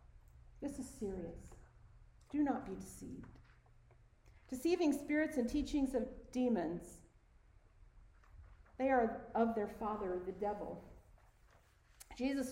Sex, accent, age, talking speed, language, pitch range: female, American, 50-69, 100 wpm, English, 230-275 Hz